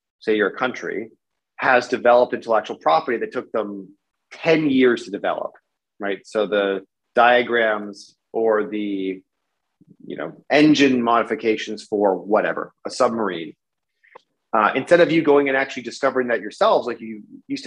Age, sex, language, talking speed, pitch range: 30-49, male, English, 140 wpm, 105-135 Hz